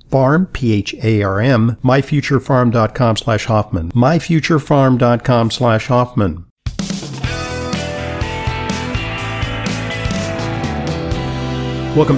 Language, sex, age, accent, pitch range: English, male, 50-69, American, 105-130 Hz